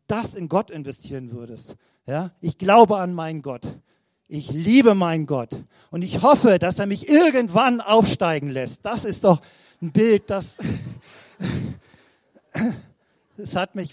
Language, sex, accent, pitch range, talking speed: German, male, German, 140-190 Hz, 140 wpm